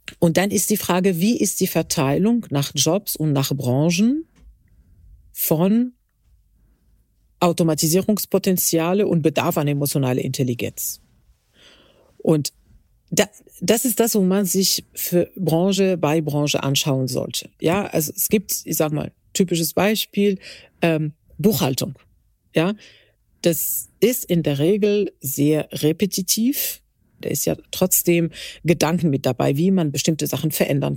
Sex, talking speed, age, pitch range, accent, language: female, 130 wpm, 40-59, 150-195 Hz, German, German